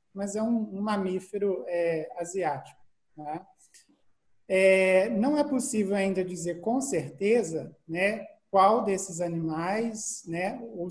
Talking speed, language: 110 wpm, Portuguese